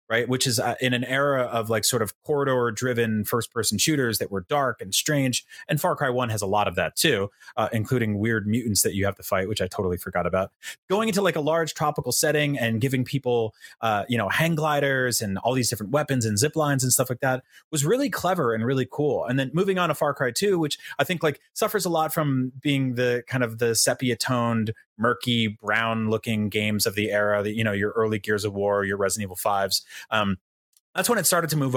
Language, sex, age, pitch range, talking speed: English, male, 30-49, 110-150 Hz, 235 wpm